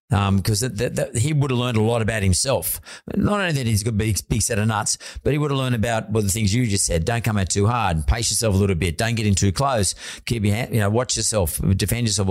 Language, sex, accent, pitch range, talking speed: English, male, Australian, 100-120 Hz, 280 wpm